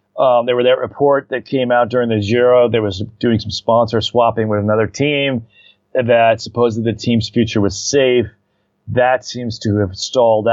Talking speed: 180 wpm